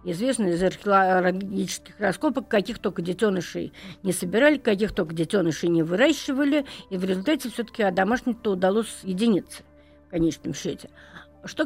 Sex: female